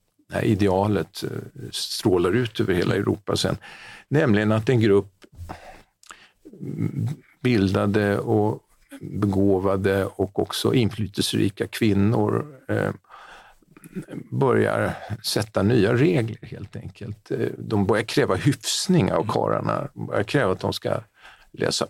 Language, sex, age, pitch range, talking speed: Swedish, male, 50-69, 100-115 Hz, 105 wpm